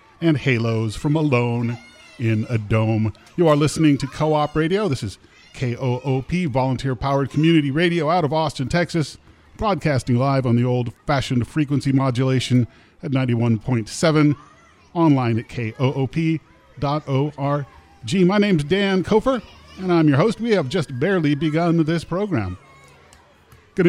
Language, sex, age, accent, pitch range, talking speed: English, male, 40-59, American, 120-160 Hz, 130 wpm